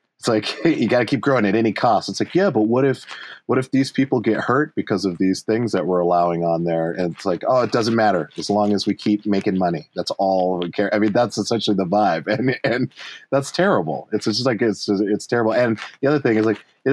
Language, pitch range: English, 85-115 Hz